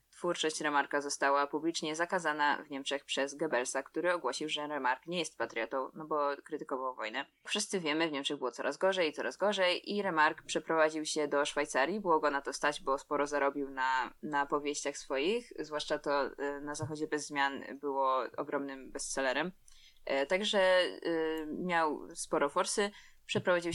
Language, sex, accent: Polish, female, native